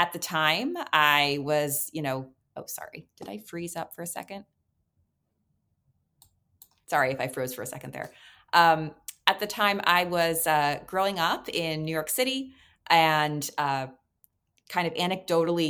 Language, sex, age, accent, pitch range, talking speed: English, female, 30-49, American, 150-200 Hz, 160 wpm